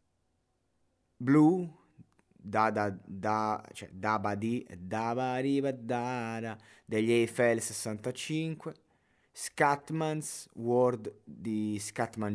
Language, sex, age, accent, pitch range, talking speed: Italian, male, 20-39, native, 100-130 Hz, 95 wpm